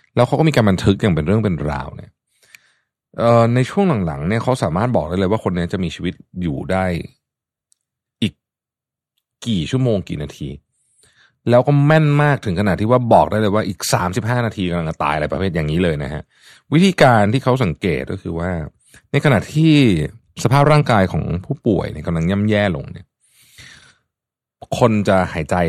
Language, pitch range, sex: Thai, 85-130 Hz, male